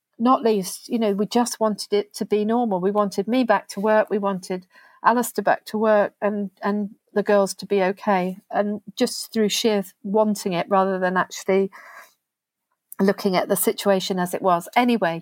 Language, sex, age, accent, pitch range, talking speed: English, female, 40-59, British, 195-230 Hz, 185 wpm